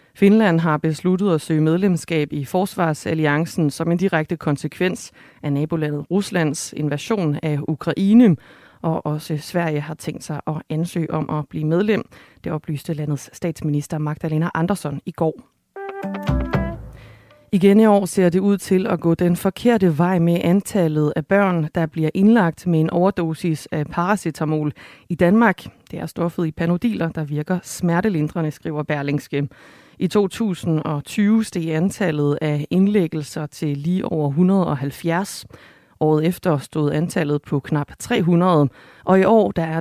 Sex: female